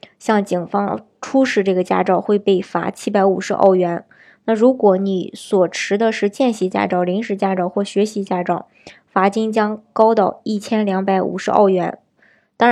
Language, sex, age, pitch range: Chinese, male, 20-39, 190-220 Hz